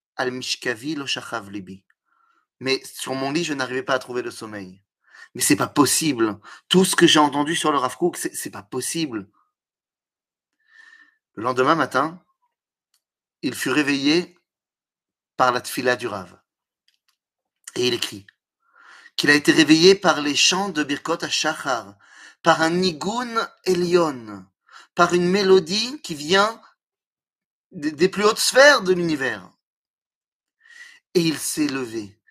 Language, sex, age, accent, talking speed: French, male, 30-49, French, 135 wpm